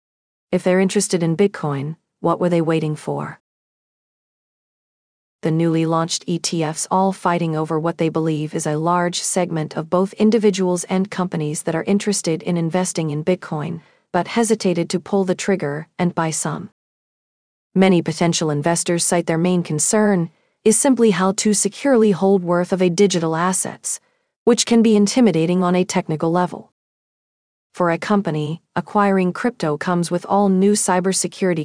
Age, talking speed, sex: 40-59, 155 wpm, female